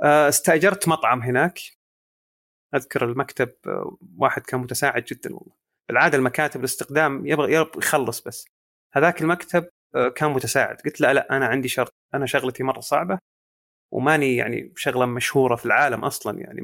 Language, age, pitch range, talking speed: Arabic, 30-49, 130-165 Hz, 135 wpm